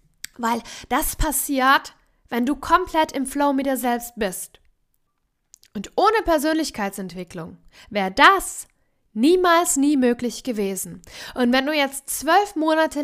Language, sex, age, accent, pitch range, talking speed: German, female, 10-29, German, 210-280 Hz, 125 wpm